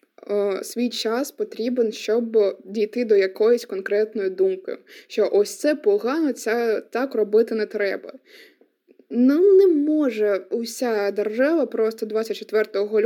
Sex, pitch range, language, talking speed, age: female, 220-325 Hz, Ukrainian, 115 wpm, 20-39